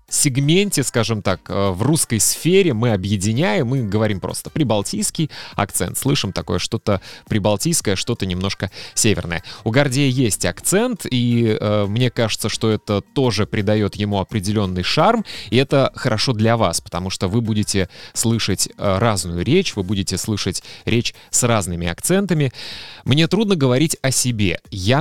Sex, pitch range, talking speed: male, 100-130 Hz, 145 wpm